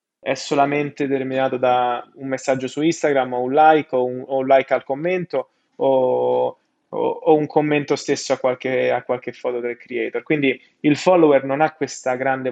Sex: male